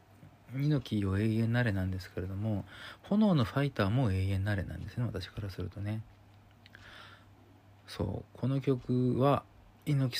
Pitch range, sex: 100-130 Hz, male